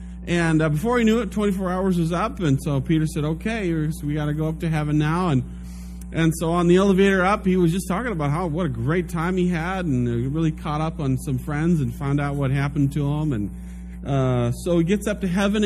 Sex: male